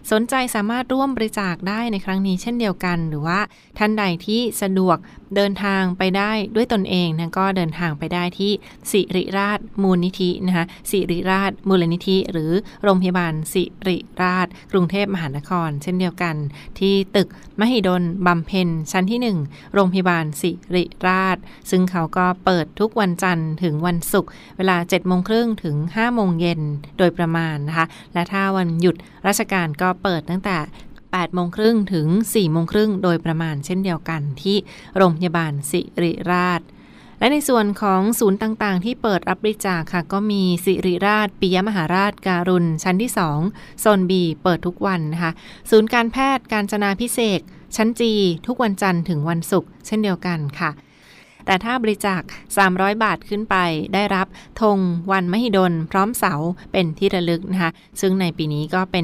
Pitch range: 170-200 Hz